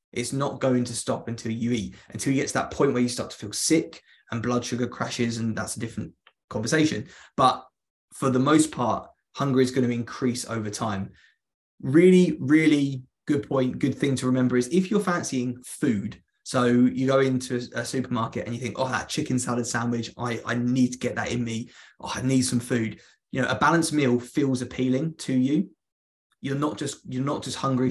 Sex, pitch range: male, 115-135 Hz